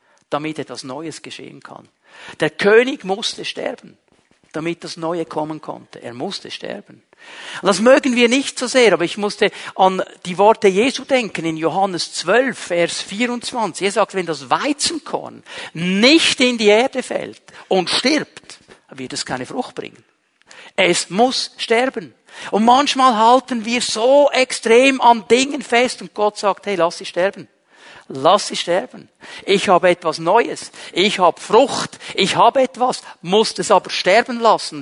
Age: 50-69